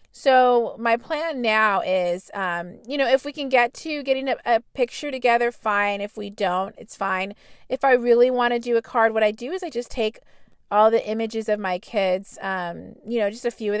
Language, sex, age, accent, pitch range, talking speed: English, female, 30-49, American, 200-240 Hz, 225 wpm